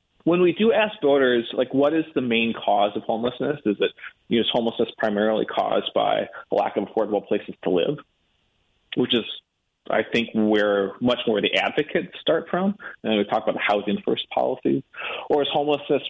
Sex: male